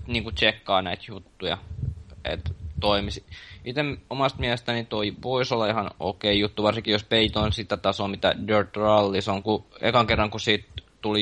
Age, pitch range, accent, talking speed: 20-39, 100-120 Hz, native, 165 wpm